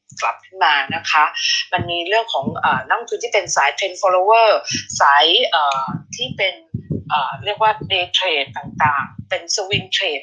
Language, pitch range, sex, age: Thai, 185-245 Hz, female, 20-39